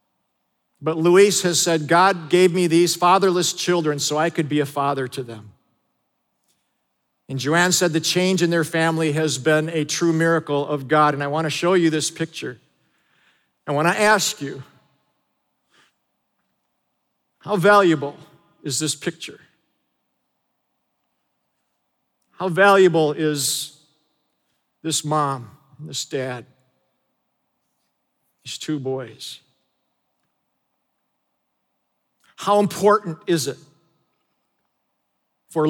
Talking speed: 110 wpm